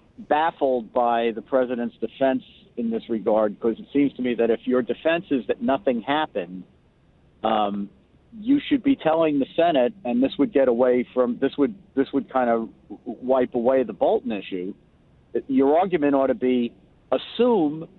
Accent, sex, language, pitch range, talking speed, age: American, male, English, 125-150 Hz, 170 wpm, 50-69